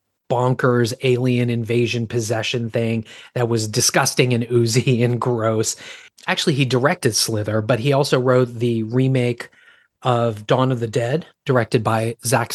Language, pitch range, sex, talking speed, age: English, 115-135 Hz, male, 145 wpm, 30-49